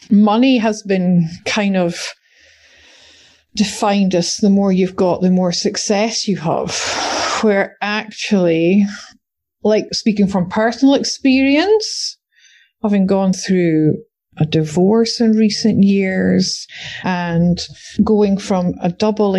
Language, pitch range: English, 170-210 Hz